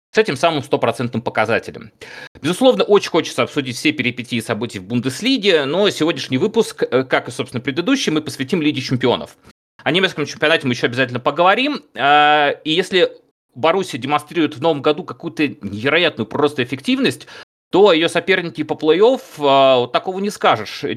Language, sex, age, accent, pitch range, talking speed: Russian, male, 30-49, native, 135-190 Hz, 150 wpm